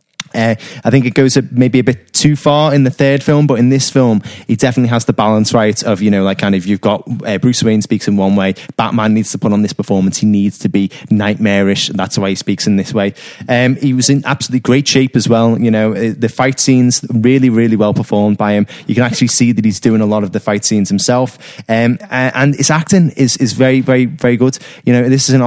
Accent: British